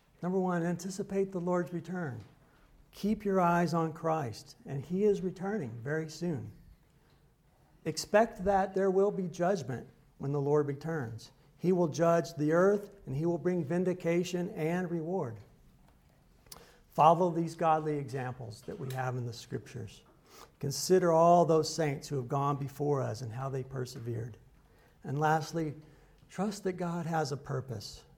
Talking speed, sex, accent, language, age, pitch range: 150 wpm, male, American, English, 60-79, 130-165 Hz